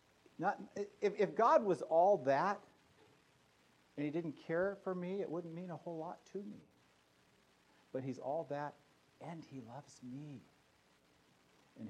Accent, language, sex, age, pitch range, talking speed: American, English, male, 50-69, 90-140 Hz, 145 wpm